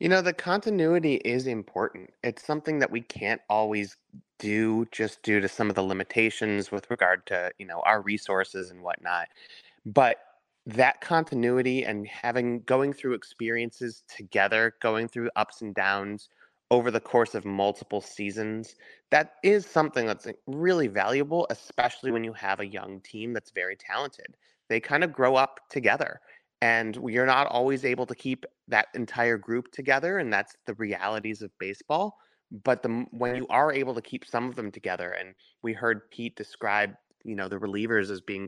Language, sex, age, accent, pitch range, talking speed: English, male, 30-49, American, 105-130 Hz, 170 wpm